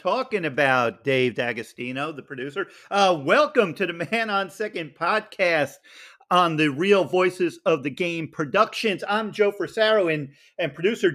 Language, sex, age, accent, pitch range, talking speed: English, male, 50-69, American, 150-200 Hz, 150 wpm